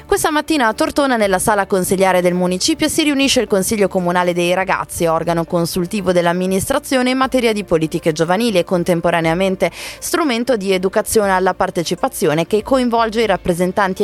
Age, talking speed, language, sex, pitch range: 20-39, 150 wpm, Italian, female, 170-220 Hz